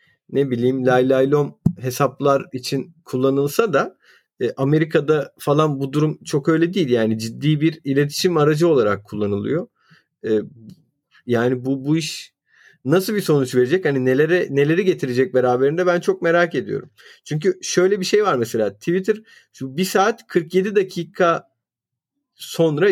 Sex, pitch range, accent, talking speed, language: male, 135-185 Hz, native, 130 wpm, Turkish